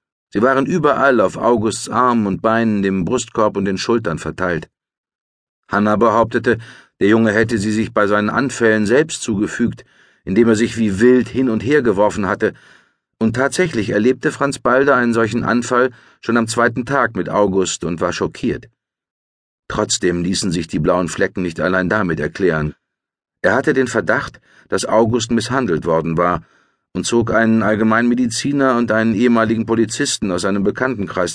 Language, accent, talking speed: German, German, 160 wpm